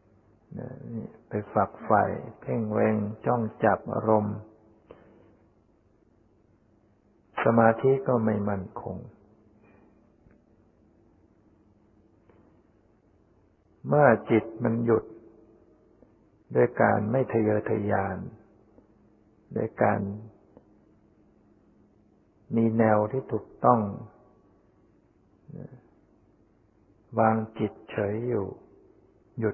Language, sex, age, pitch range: Thai, male, 60-79, 105-115 Hz